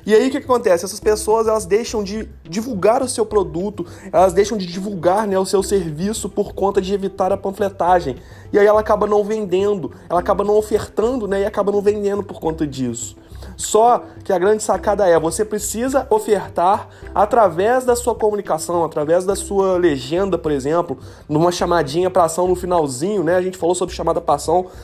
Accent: Brazilian